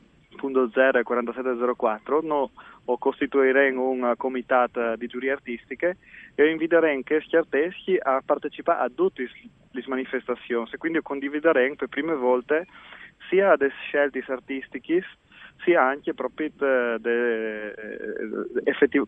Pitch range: 125-145 Hz